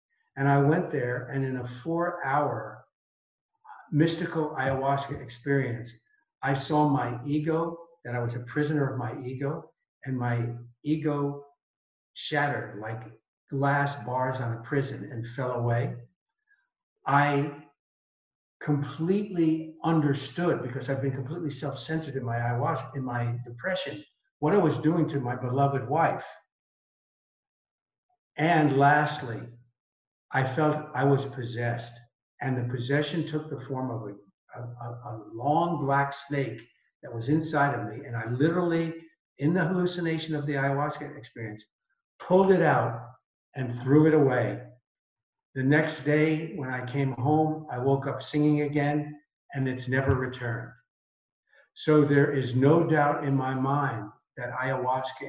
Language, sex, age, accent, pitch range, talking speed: English, male, 60-79, American, 125-155 Hz, 135 wpm